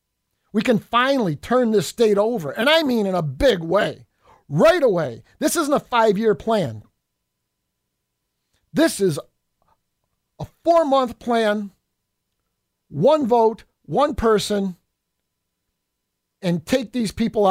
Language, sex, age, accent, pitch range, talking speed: English, male, 50-69, American, 170-235 Hz, 115 wpm